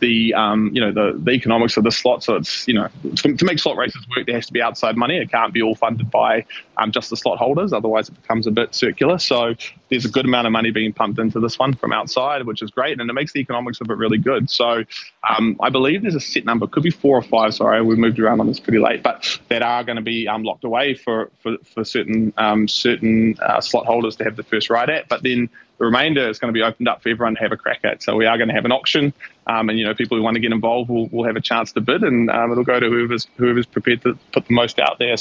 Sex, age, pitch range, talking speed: male, 20-39, 110-125 Hz, 290 wpm